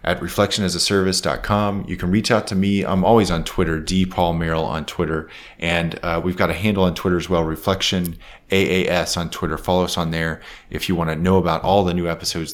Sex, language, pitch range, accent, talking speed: male, English, 85-100 Hz, American, 210 wpm